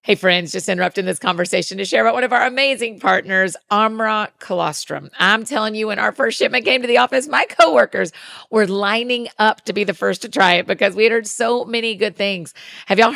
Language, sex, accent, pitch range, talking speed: English, female, American, 180-225 Hz, 220 wpm